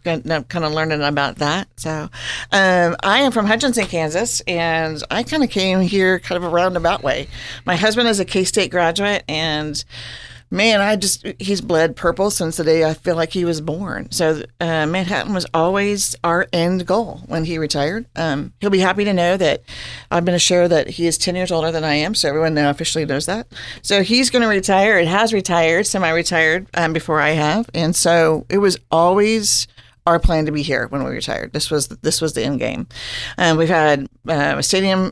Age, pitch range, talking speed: 50-69, 150-185 Hz, 210 wpm